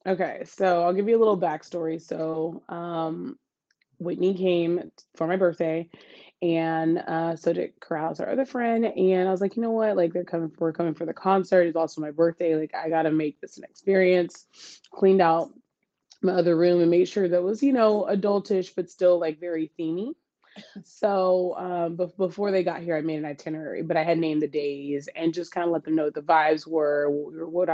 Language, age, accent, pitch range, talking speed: English, 20-39, American, 160-190 Hz, 205 wpm